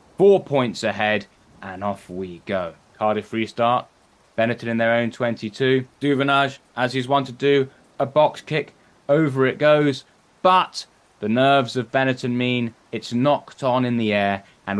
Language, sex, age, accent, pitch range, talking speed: English, male, 10-29, British, 105-140 Hz, 160 wpm